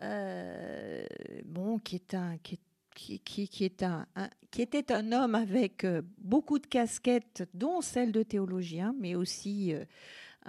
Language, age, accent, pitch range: French, 50-69, French, 190-250 Hz